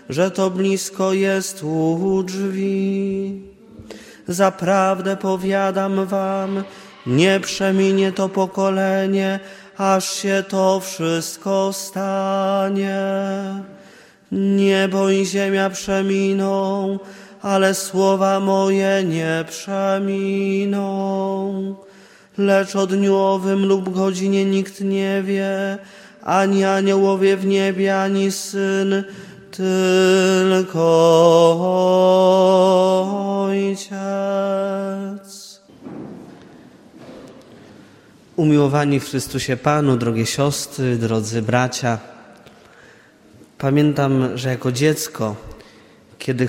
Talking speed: 75 wpm